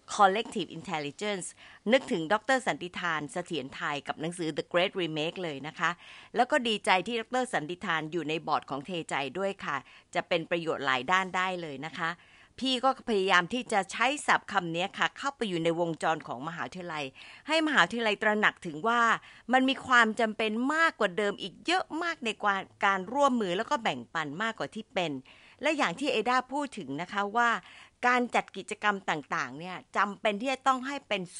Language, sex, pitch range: Thai, female, 160-230 Hz